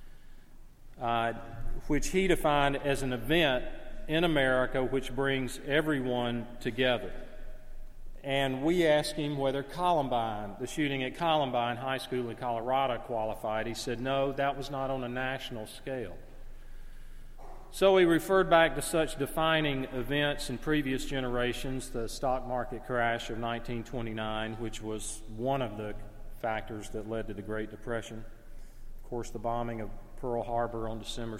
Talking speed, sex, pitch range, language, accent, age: 145 wpm, male, 110-135 Hz, English, American, 40-59